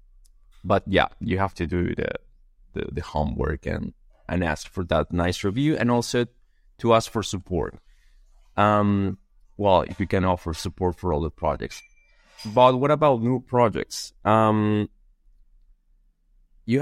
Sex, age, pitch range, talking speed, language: male, 20-39, 95-115 Hz, 145 wpm, English